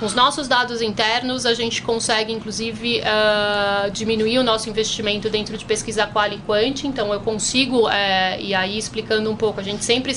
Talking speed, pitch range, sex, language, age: 185 wpm, 210-235 Hz, female, Portuguese, 30-49